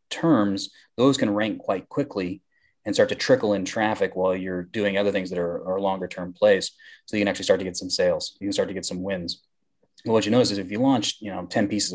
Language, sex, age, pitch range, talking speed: English, male, 30-49, 95-125 Hz, 260 wpm